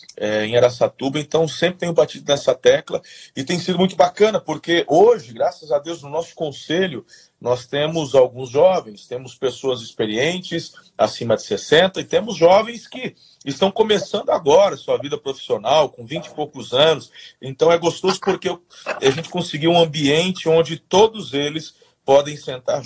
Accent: Brazilian